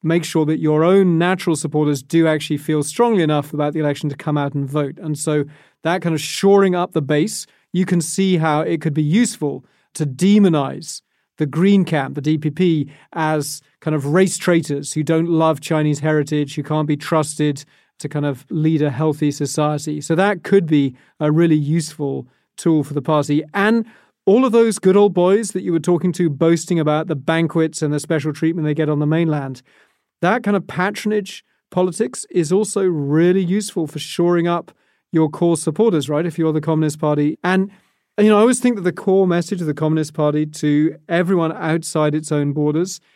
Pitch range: 150-180 Hz